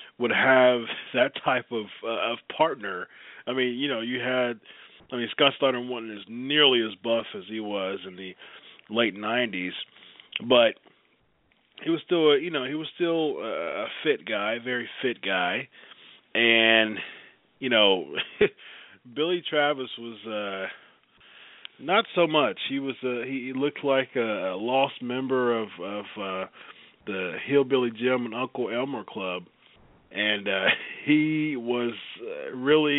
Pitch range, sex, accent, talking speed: 105-135 Hz, male, American, 145 wpm